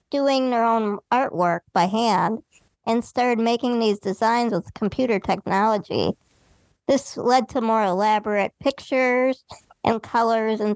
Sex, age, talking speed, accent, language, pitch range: male, 40-59, 130 wpm, American, English, 210-275 Hz